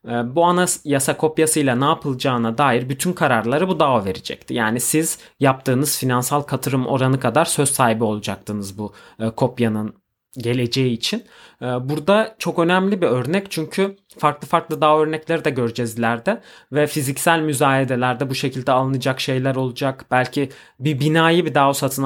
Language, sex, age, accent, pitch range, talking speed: Turkish, male, 30-49, native, 120-155 Hz, 145 wpm